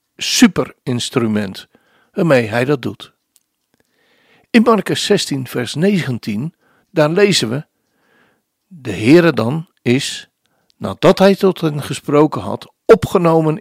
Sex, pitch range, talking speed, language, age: male, 130-195 Hz, 110 wpm, Dutch, 60-79